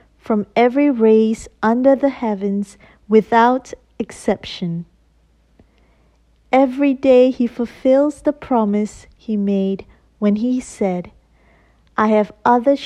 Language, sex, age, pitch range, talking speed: English, female, 40-59, 190-230 Hz, 105 wpm